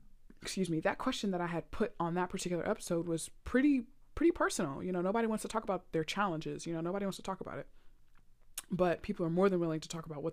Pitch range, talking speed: 165-220 Hz, 250 wpm